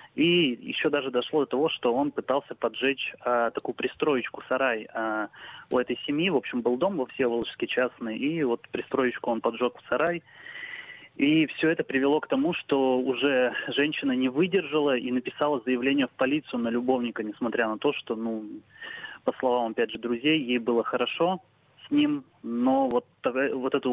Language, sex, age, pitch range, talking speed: Russian, male, 20-39, 120-160 Hz, 175 wpm